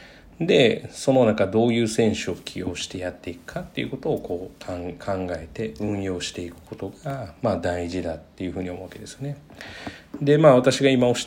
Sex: male